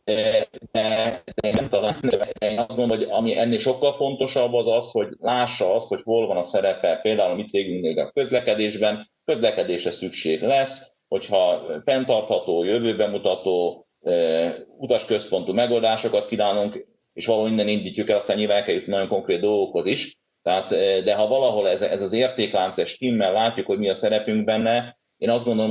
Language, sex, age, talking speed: Hungarian, male, 40-59, 155 wpm